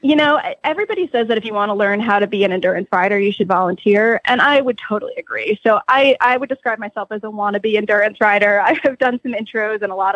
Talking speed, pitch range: 255 wpm, 200-240 Hz